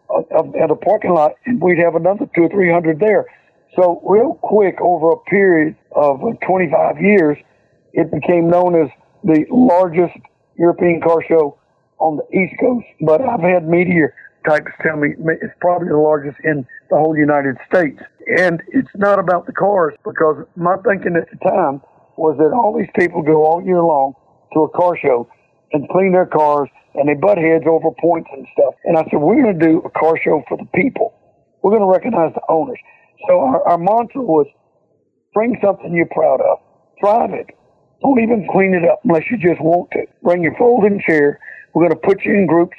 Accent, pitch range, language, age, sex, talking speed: American, 155-195 Hz, English, 60-79, male, 195 wpm